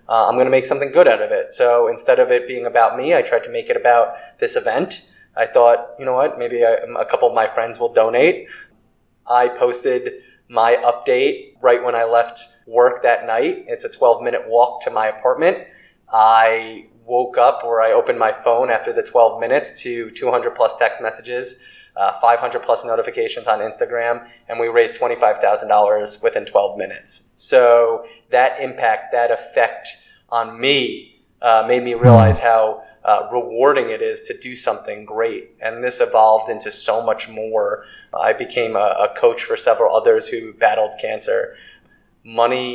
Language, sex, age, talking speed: English, male, 20-39, 175 wpm